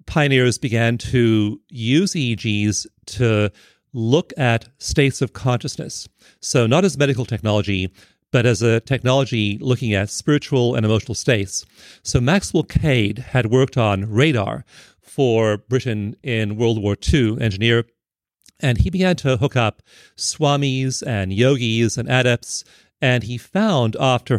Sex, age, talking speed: male, 40-59, 135 wpm